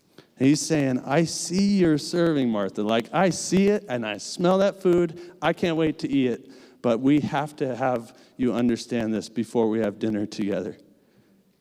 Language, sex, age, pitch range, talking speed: English, male, 40-59, 120-150 Hz, 180 wpm